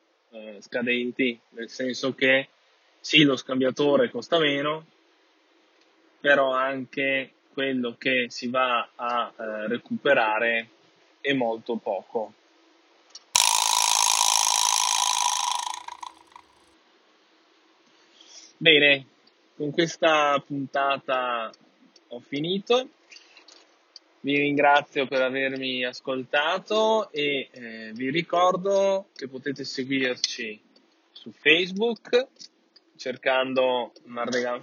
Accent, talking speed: native, 75 wpm